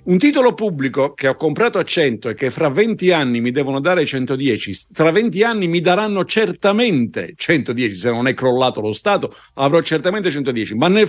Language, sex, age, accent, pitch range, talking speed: Italian, male, 50-69, native, 120-180 Hz, 190 wpm